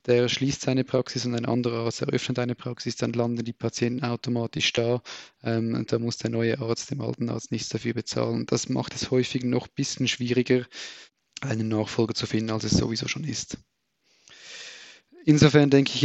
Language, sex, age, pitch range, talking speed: German, male, 20-39, 120-135 Hz, 180 wpm